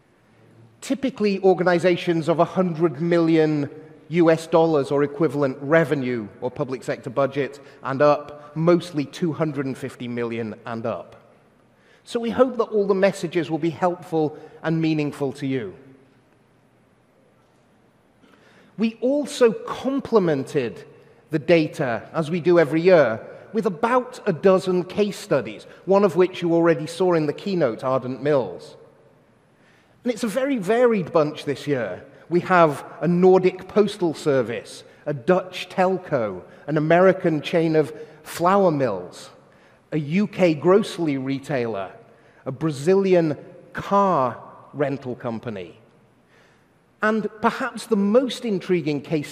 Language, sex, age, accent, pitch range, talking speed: English, male, 30-49, British, 145-195 Hz, 120 wpm